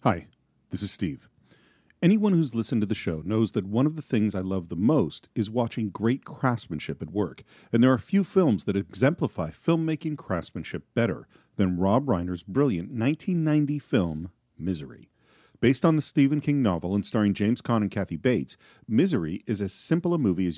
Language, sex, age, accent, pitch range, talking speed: English, male, 40-59, American, 95-145 Hz, 185 wpm